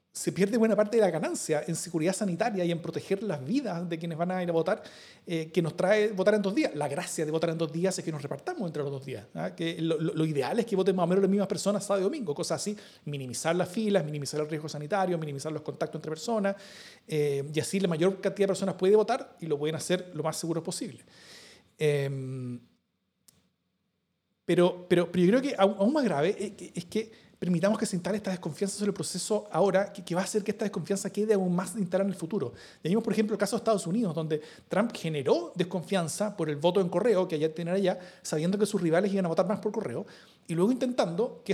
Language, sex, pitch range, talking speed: Spanish, male, 165-205 Hz, 240 wpm